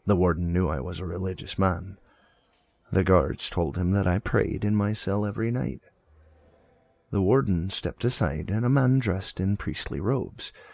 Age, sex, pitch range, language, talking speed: 40-59, male, 85-105 Hz, English, 175 wpm